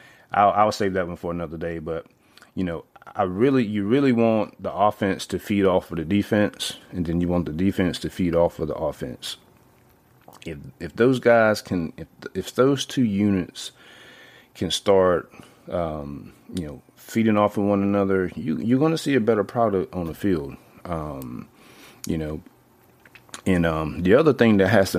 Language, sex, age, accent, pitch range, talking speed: English, male, 30-49, American, 85-105 Hz, 185 wpm